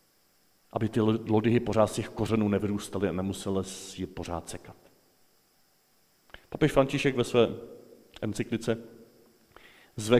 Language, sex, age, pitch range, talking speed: Czech, male, 40-59, 95-125 Hz, 110 wpm